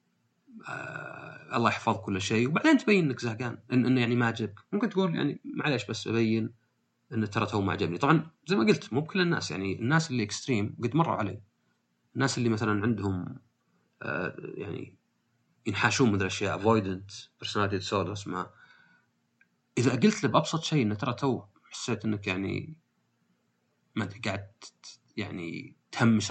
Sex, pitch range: male, 100-125 Hz